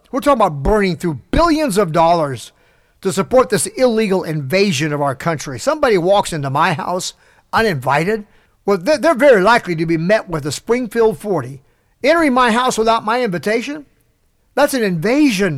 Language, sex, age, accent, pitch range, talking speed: English, male, 50-69, American, 165-225 Hz, 160 wpm